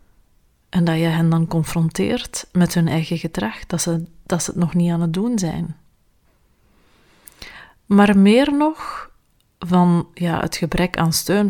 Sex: female